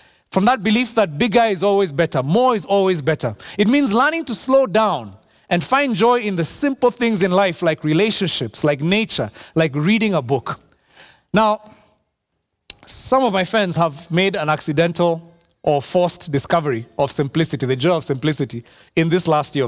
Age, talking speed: 30-49, 175 wpm